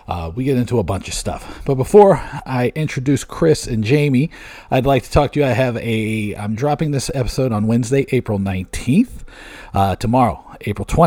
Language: English